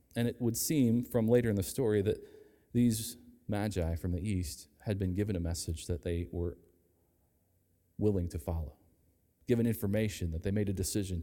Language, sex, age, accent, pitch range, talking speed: English, male, 40-59, American, 90-120 Hz, 175 wpm